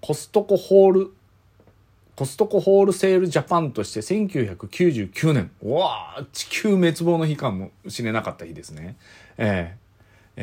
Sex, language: male, Japanese